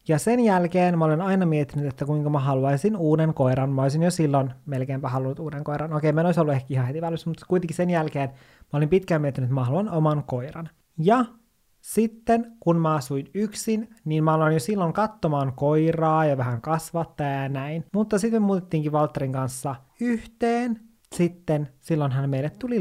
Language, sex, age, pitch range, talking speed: Finnish, male, 20-39, 135-175 Hz, 185 wpm